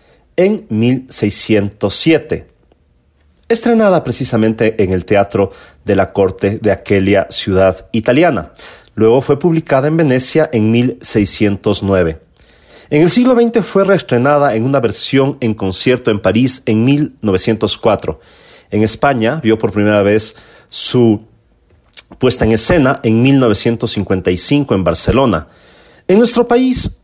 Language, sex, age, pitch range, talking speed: Spanish, male, 40-59, 105-140 Hz, 120 wpm